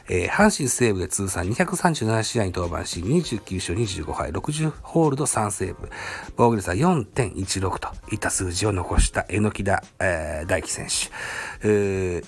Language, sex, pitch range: Japanese, male, 95-145 Hz